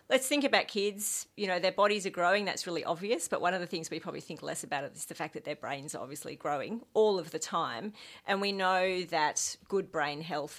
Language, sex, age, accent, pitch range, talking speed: English, female, 40-59, Australian, 150-195 Hz, 250 wpm